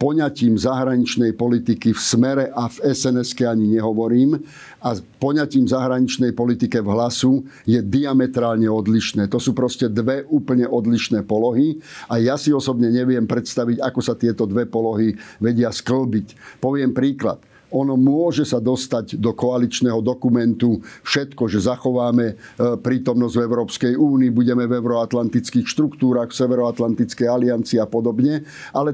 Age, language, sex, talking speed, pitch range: 50-69, Slovak, male, 135 wpm, 120-135 Hz